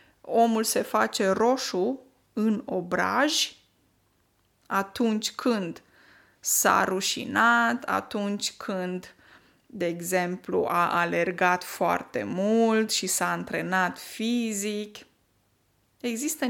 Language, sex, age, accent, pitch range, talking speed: Romanian, female, 20-39, native, 190-240 Hz, 85 wpm